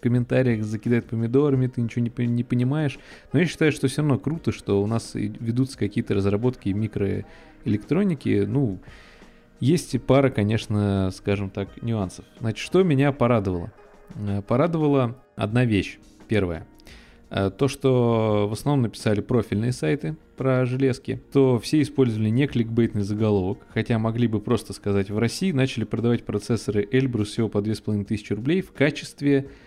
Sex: male